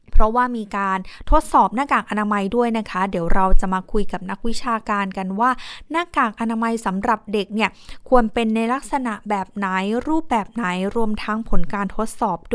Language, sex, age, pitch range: Thai, female, 20-39, 205-250 Hz